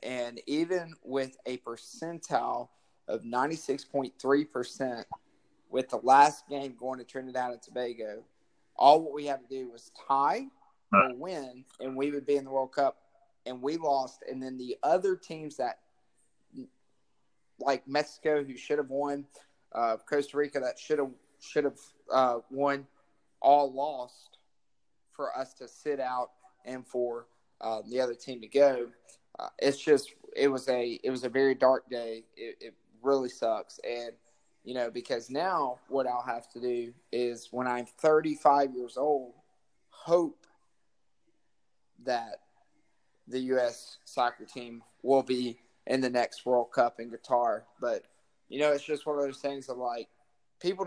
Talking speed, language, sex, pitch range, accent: 155 wpm, English, male, 125-145 Hz, American